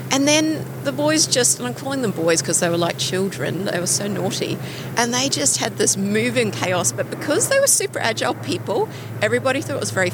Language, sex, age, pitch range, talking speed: English, female, 30-49, 155-220 Hz, 225 wpm